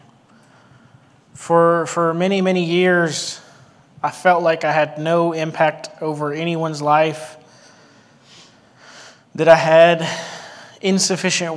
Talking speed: 100 wpm